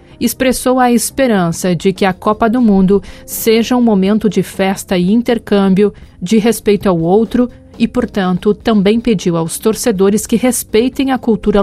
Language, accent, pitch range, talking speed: Portuguese, Brazilian, 190-220 Hz, 155 wpm